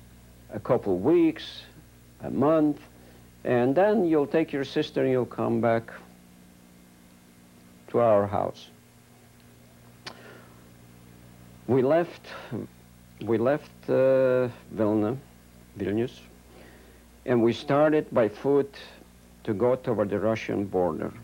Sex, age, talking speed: male, 60-79, 105 wpm